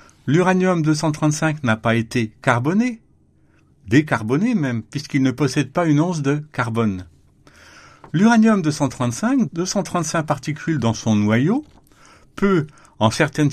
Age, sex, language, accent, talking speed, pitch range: 60-79, male, French, French, 110 wpm, 125-180 Hz